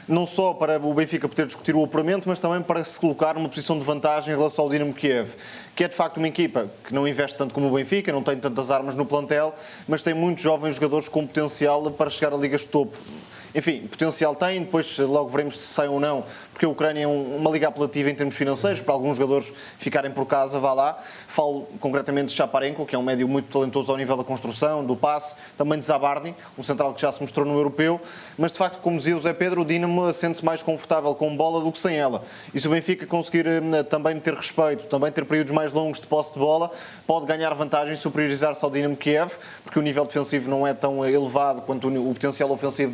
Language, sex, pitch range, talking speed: Portuguese, male, 145-165 Hz, 235 wpm